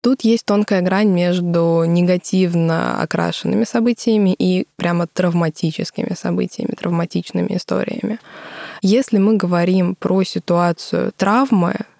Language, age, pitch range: Russian, 20-39, 175-205 Hz